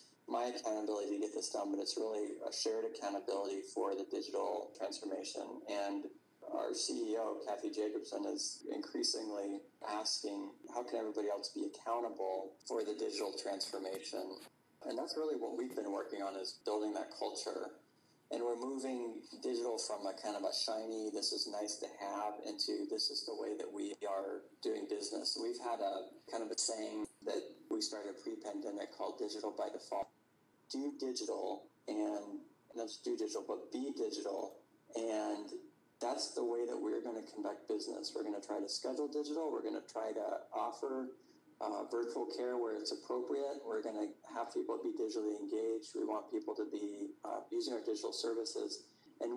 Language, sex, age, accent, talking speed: English, male, 30-49, American, 175 wpm